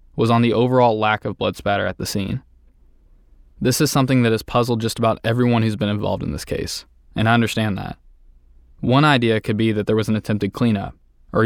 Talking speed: 215 wpm